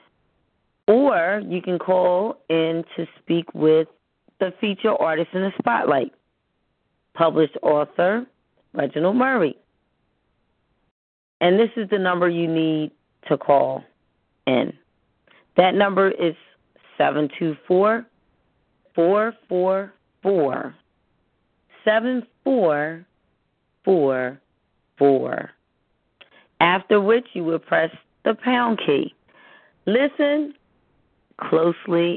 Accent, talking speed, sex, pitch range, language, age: American, 80 wpm, female, 160-210 Hz, English, 30-49